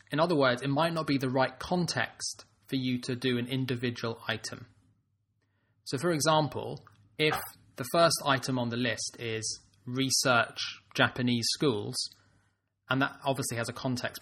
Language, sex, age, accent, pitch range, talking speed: English, male, 20-39, British, 110-140 Hz, 155 wpm